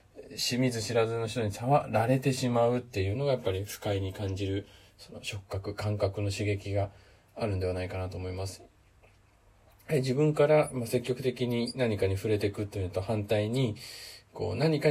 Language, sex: Japanese, male